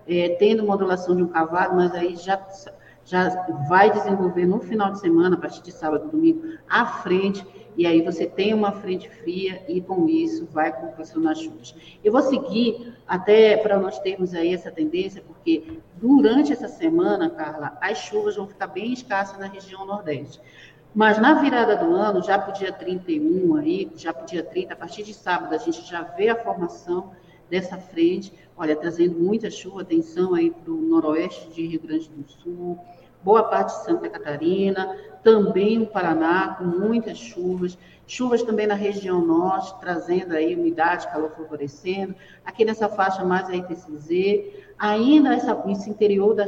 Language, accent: Portuguese, Brazilian